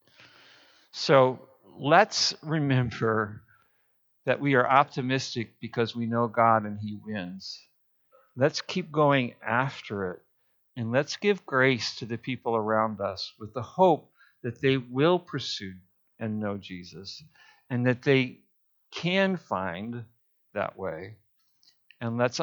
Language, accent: English, American